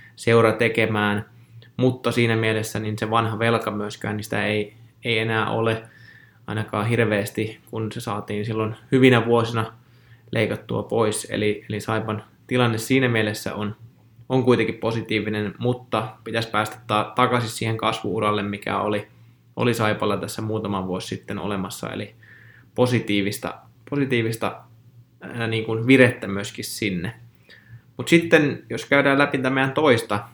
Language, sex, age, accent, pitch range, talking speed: Finnish, male, 20-39, native, 105-120 Hz, 125 wpm